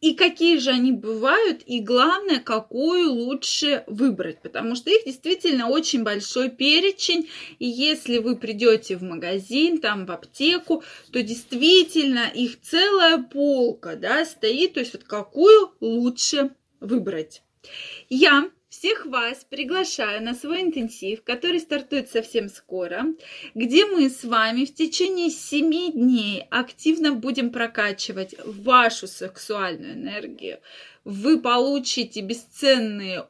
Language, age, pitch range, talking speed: Russian, 20-39, 215-315 Hz, 120 wpm